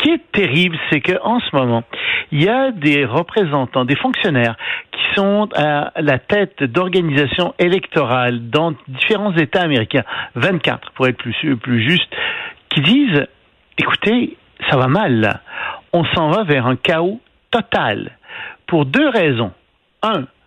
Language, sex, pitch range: French, male, 140-220 Hz